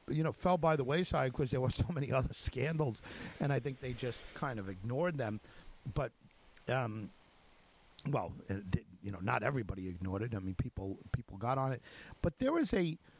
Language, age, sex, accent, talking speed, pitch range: English, 50-69, male, American, 200 wpm, 110-155 Hz